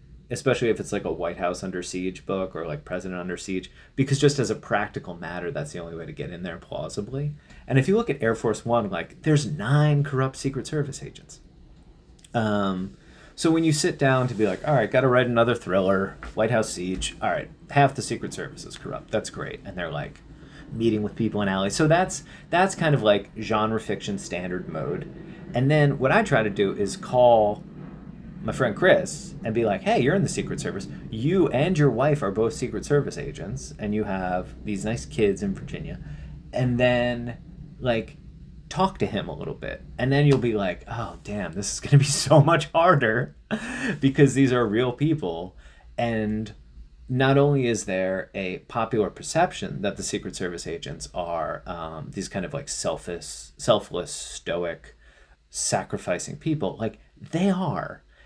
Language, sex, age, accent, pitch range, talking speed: English, male, 30-49, American, 100-150 Hz, 190 wpm